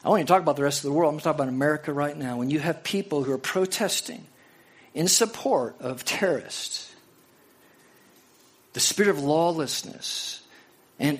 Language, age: English, 50-69